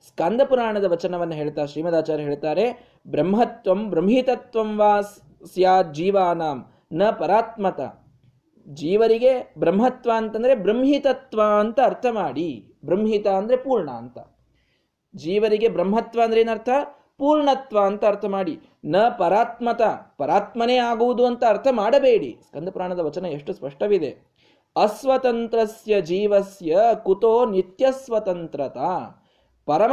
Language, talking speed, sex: Kannada, 95 wpm, male